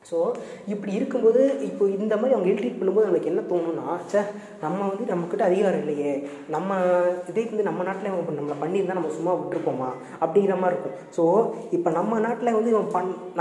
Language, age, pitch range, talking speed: Tamil, 20-39, 165-210 Hz, 175 wpm